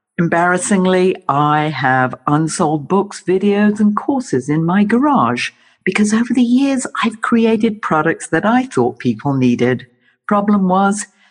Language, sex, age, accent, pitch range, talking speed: English, female, 60-79, British, 130-205 Hz, 135 wpm